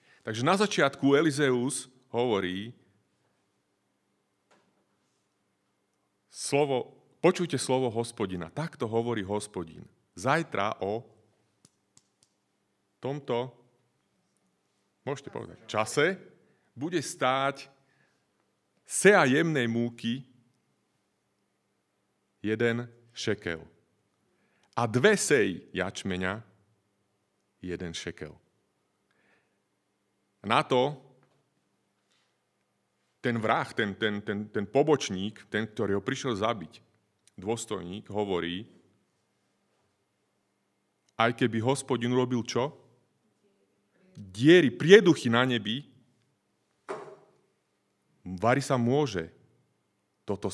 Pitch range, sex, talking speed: 100-130 Hz, male, 70 wpm